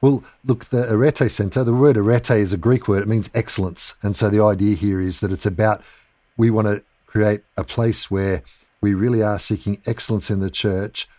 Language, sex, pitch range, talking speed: English, male, 95-110 Hz, 210 wpm